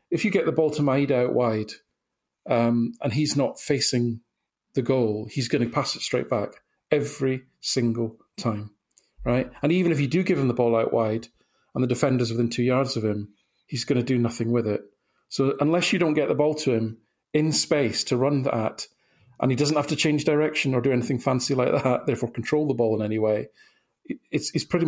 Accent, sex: British, male